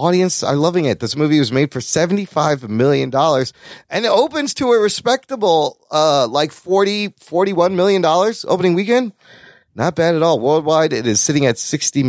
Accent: American